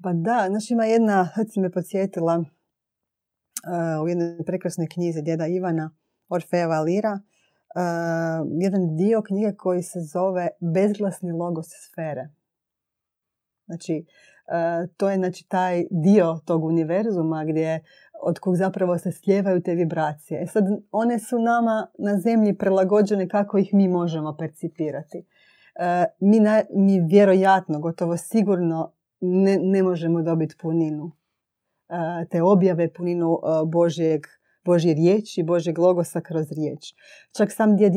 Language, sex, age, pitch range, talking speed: Croatian, female, 30-49, 160-190 Hz, 130 wpm